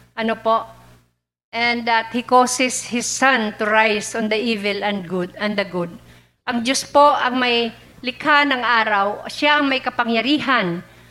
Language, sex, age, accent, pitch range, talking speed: Filipino, female, 50-69, native, 195-255 Hz, 155 wpm